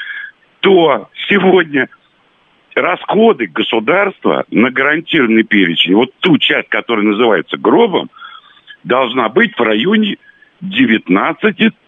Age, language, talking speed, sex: 70-89, Russian, 90 wpm, male